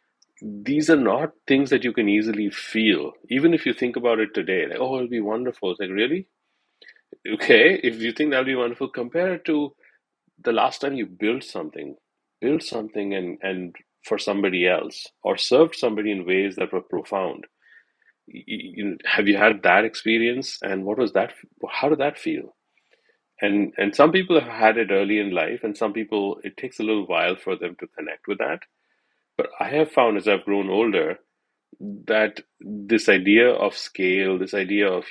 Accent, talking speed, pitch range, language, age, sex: Indian, 190 wpm, 105-150 Hz, English, 40-59, male